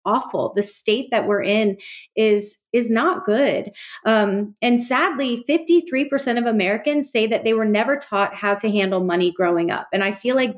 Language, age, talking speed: English, 30-49, 180 wpm